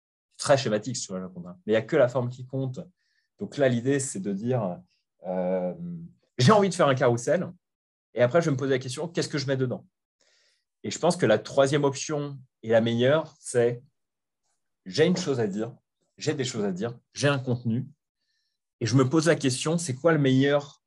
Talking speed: 210 wpm